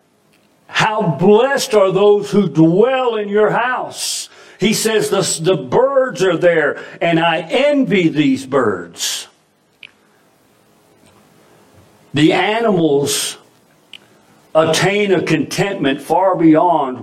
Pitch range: 140-200 Hz